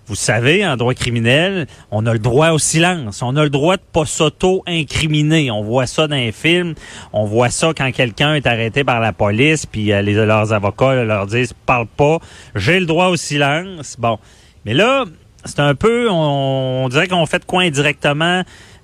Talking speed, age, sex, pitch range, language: 205 wpm, 30-49, male, 120-165 Hz, French